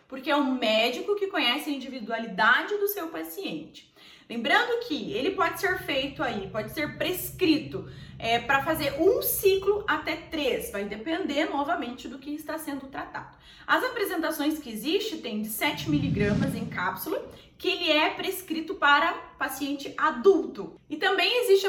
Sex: female